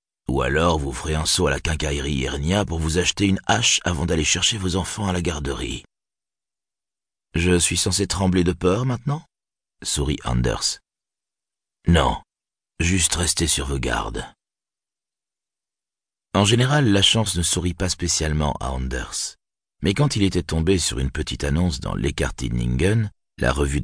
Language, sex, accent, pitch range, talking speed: French, male, French, 75-95 Hz, 155 wpm